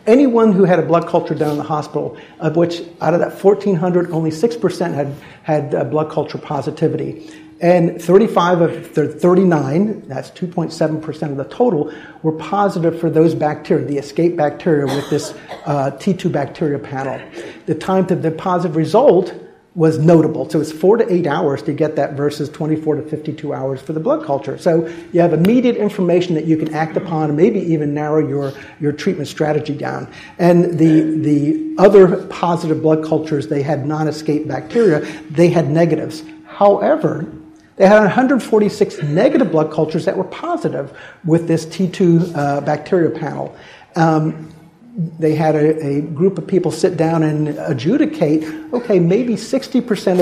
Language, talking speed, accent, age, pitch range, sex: English, 160 wpm, American, 50-69, 155-180 Hz, male